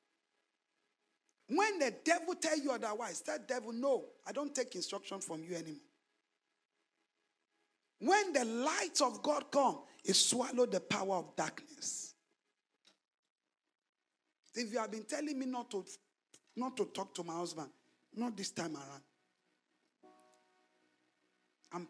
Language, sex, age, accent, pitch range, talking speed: English, male, 50-69, Nigerian, 165-265 Hz, 130 wpm